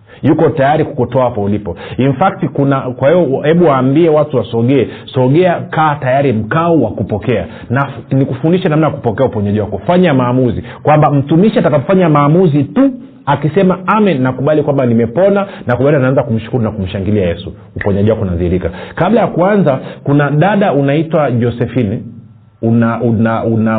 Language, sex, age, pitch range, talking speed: Swahili, male, 40-59, 115-155 Hz, 155 wpm